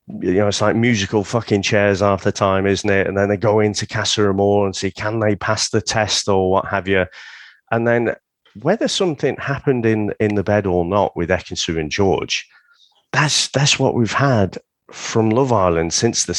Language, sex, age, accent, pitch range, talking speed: English, male, 40-59, British, 95-125 Hz, 200 wpm